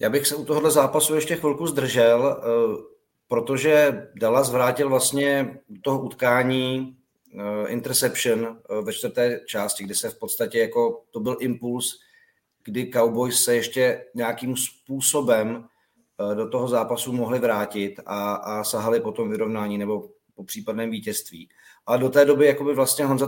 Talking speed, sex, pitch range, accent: 145 wpm, male, 110-135 Hz, native